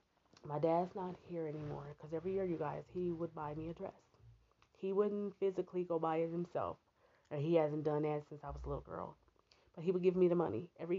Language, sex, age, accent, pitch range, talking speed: English, female, 20-39, American, 145-190 Hz, 230 wpm